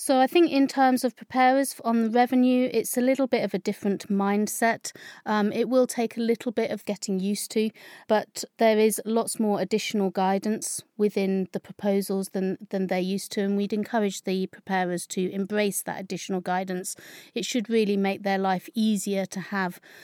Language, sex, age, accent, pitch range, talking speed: English, female, 30-49, British, 190-220 Hz, 190 wpm